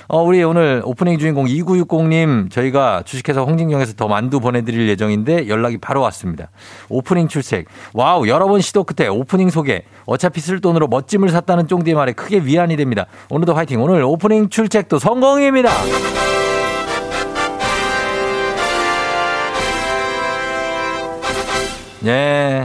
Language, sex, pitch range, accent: Korean, male, 100-155 Hz, native